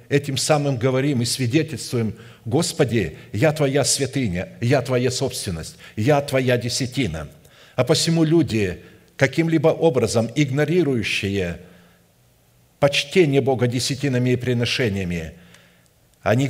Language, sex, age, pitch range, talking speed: Russian, male, 50-69, 120-150 Hz, 100 wpm